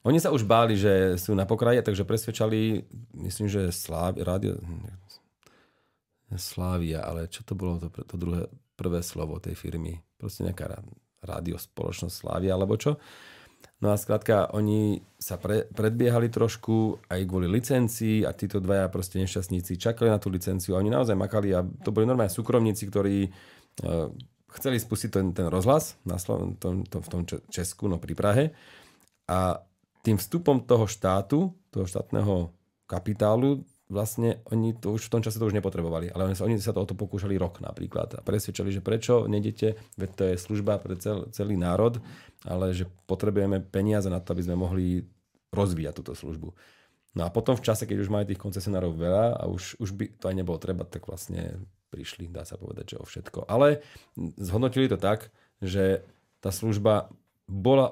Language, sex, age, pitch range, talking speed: English, male, 40-59, 90-110 Hz, 170 wpm